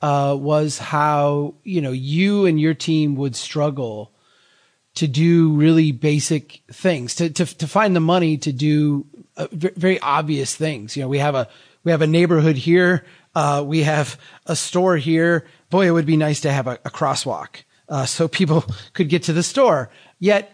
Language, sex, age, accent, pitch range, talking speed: English, male, 30-49, American, 135-170 Hz, 180 wpm